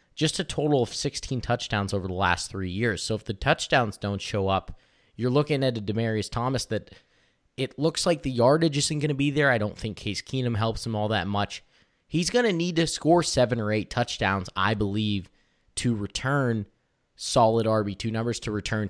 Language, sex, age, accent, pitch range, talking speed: English, male, 20-39, American, 100-125 Hz, 205 wpm